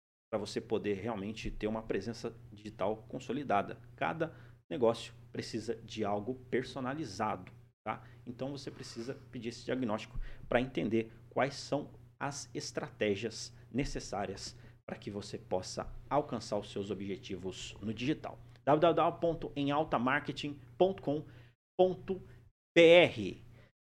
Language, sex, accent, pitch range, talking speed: Portuguese, male, Brazilian, 115-155 Hz, 100 wpm